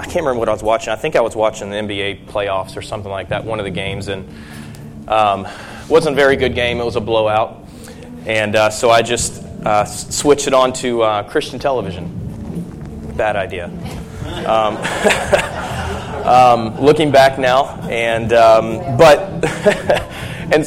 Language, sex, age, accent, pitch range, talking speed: English, male, 20-39, American, 105-130 Hz, 165 wpm